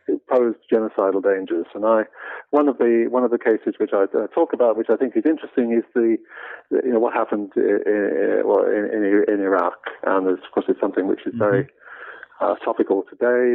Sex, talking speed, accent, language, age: male, 190 wpm, British, English, 40-59